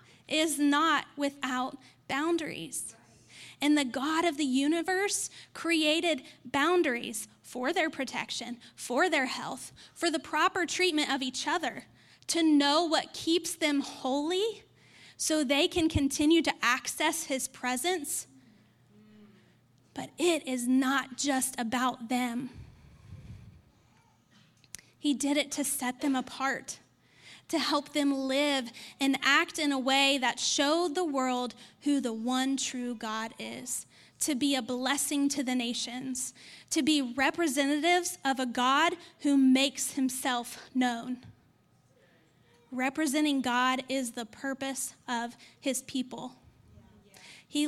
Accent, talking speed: American, 125 wpm